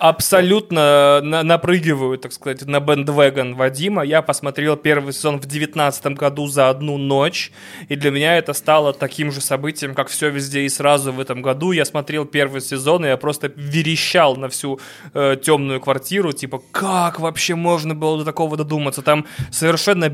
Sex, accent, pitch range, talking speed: male, native, 140-160 Hz, 165 wpm